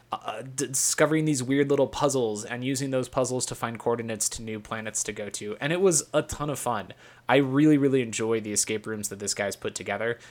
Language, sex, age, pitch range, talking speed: English, male, 20-39, 115-145 Hz, 220 wpm